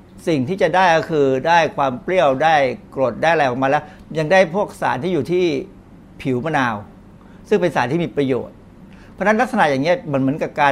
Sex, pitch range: male, 125-160 Hz